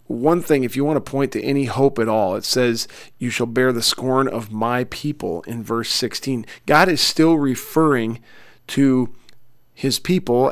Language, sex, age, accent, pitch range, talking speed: English, male, 40-59, American, 115-135 Hz, 185 wpm